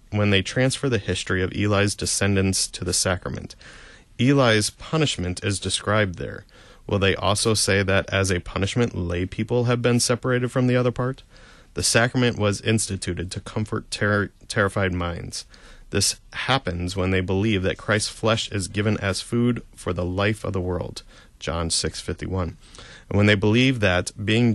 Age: 30-49